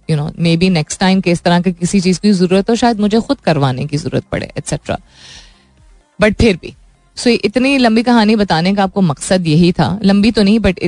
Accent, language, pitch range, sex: native, Hindi, 170-225 Hz, female